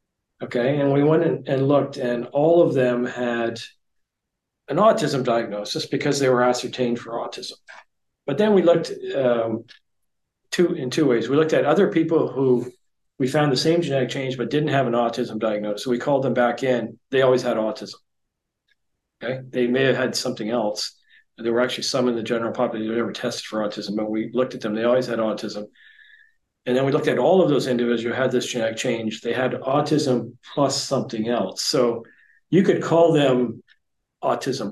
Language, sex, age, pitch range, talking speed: English, male, 40-59, 120-145 Hz, 195 wpm